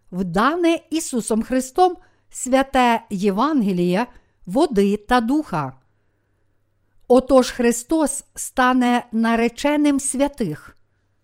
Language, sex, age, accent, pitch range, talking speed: Ukrainian, female, 50-69, native, 185-270 Hz, 70 wpm